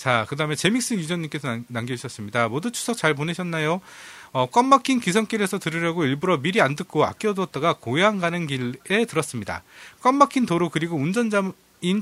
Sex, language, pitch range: male, Korean, 155-225 Hz